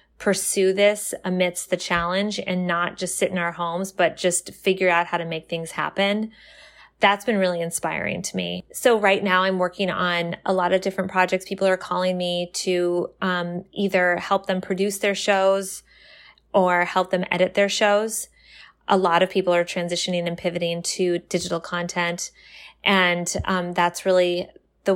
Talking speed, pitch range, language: 175 wpm, 175-195 Hz, English